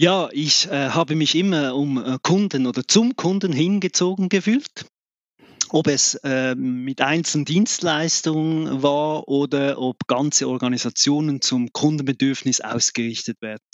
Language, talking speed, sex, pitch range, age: German, 125 wpm, male, 125-160 Hz, 30-49